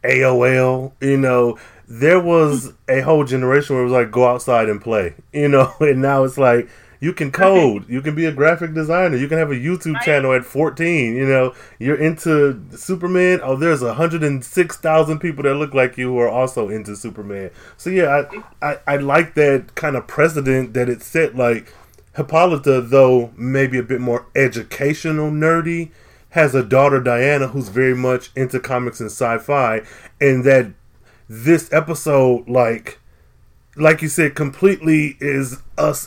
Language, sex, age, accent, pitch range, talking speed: English, male, 20-39, American, 125-150 Hz, 170 wpm